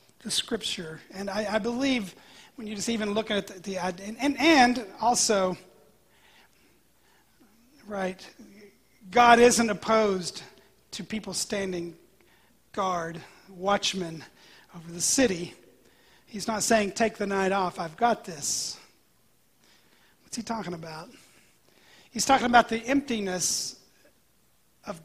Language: English